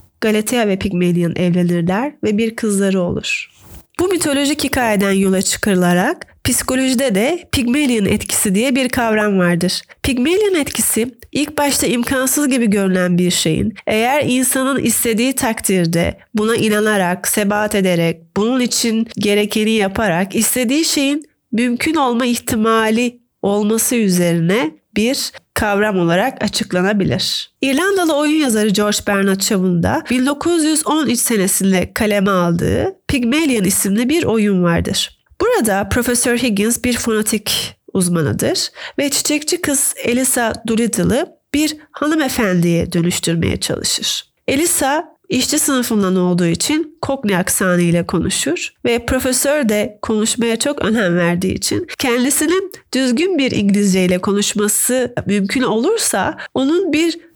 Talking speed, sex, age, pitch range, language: 115 wpm, female, 30-49, 195-275 Hz, Turkish